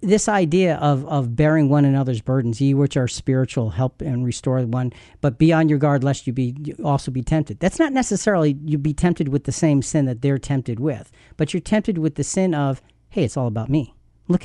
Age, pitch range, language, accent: 50-69, 135-185 Hz, English, American